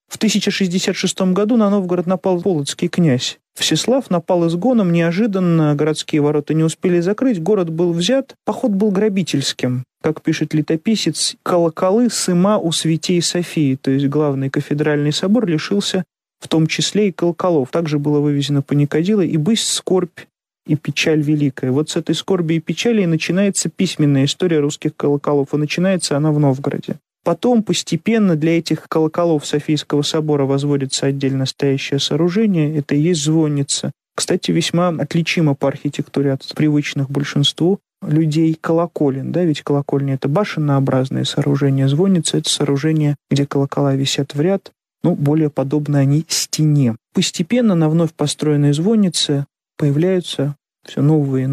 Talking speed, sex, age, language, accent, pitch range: 140 wpm, male, 30-49, Russian, native, 145-185 Hz